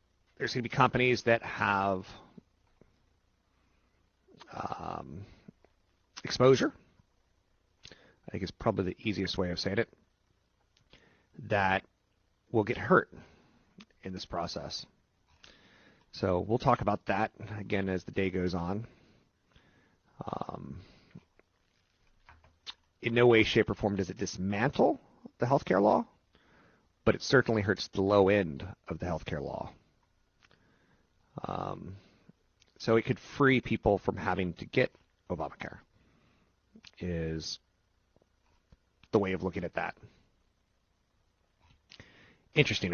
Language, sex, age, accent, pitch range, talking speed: English, male, 30-49, American, 90-115 Hz, 110 wpm